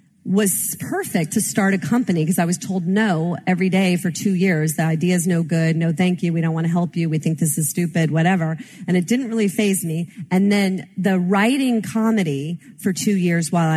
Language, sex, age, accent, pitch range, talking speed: English, female, 40-59, American, 165-205 Hz, 220 wpm